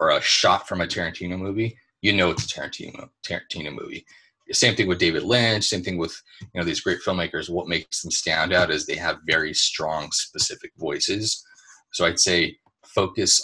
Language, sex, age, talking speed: English, male, 30-49, 190 wpm